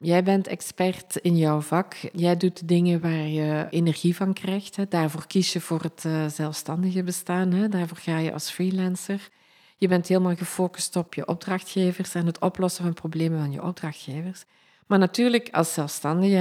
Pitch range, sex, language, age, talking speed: 155-180 Hz, female, Dutch, 50-69, 165 wpm